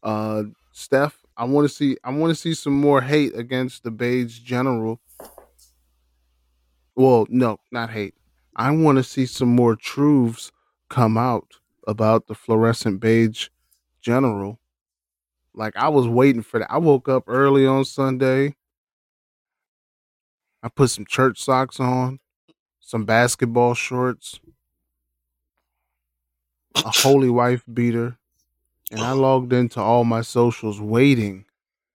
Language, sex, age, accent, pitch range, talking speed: English, male, 20-39, American, 105-125 Hz, 130 wpm